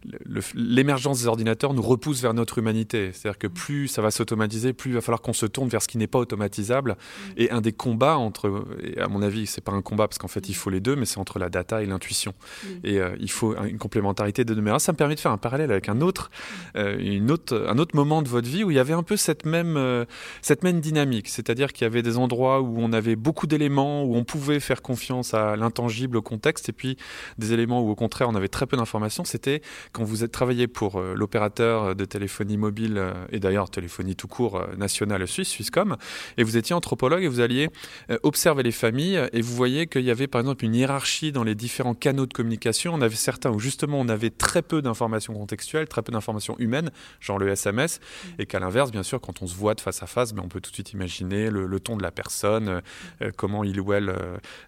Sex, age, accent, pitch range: male, 20-39, French, 105-130 Hz